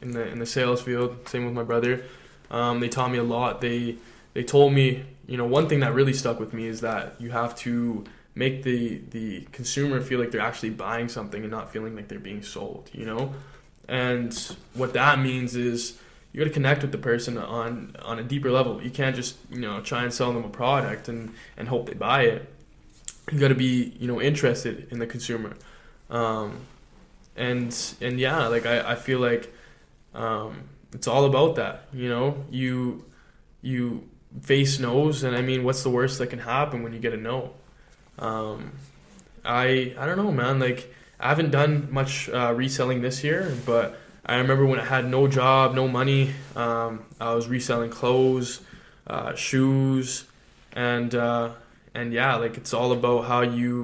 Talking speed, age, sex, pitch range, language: 190 wpm, 10-29, male, 115-130 Hz, English